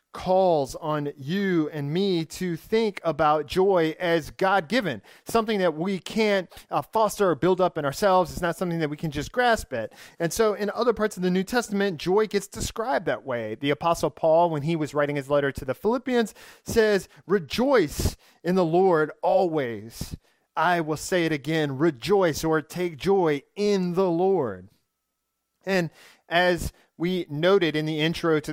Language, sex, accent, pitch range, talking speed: English, male, American, 150-195 Hz, 175 wpm